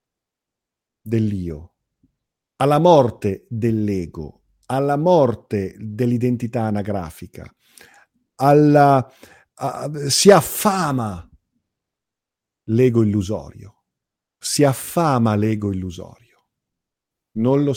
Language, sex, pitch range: Italian, male, 105-130 Hz